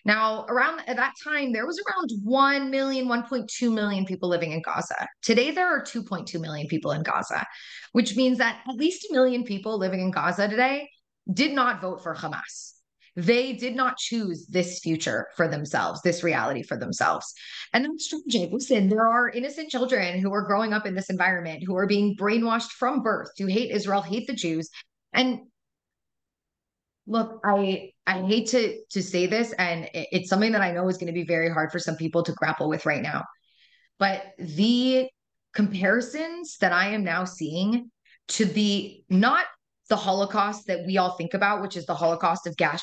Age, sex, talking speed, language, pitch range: 20-39, female, 185 wpm, English, 180-245 Hz